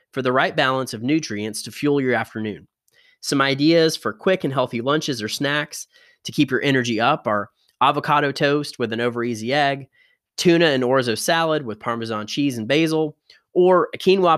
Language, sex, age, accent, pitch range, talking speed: English, male, 20-39, American, 125-170 Hz, 185 wpm